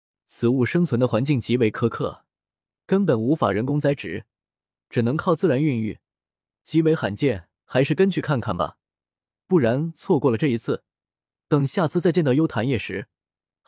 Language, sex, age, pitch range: Chinese, male, 20-39, 115-160 Hz